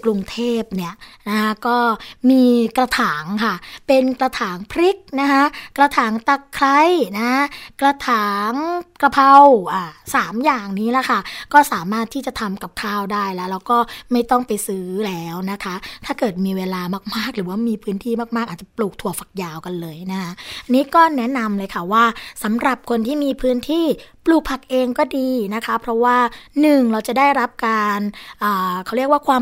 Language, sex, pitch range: Thai, female, 195-260 Hz